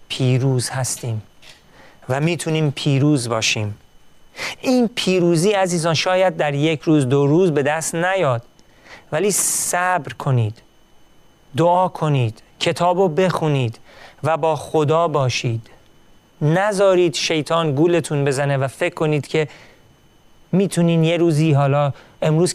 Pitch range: 130-160 Hz